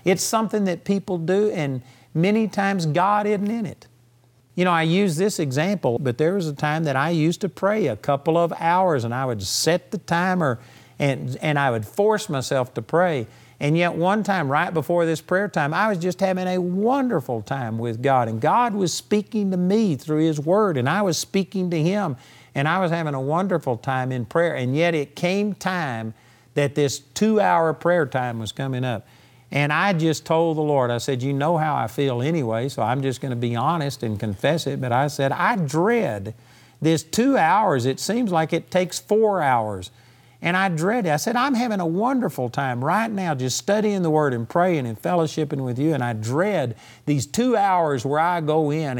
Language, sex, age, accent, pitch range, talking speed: English, male, 50-69, American, 130-185 Hz, 215 wpm